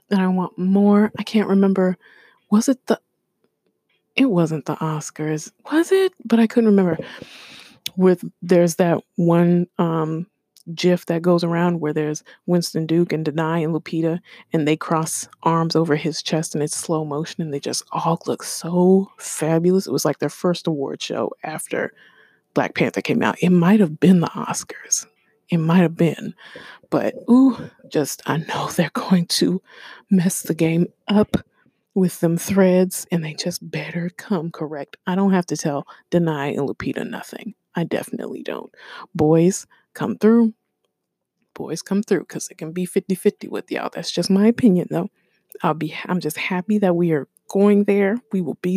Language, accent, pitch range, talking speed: English, American, 160-200 Hz, 175 wpm